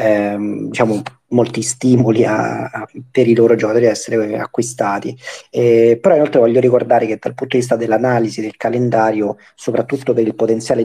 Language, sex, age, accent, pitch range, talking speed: Italian, male, 30-49, native, 110-120 Hz, 170 wpm